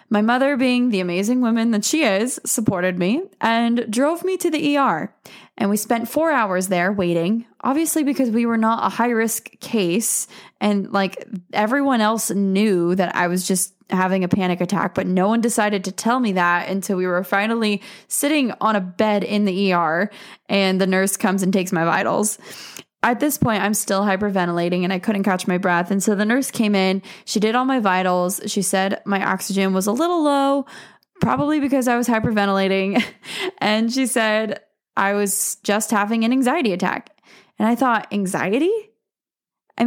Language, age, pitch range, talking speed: English, 20-39, 190-240 Hz, 185 wpm